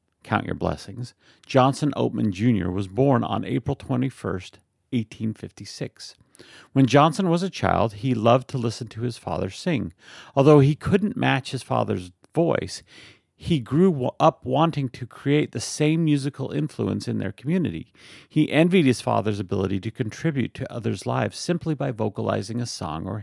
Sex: male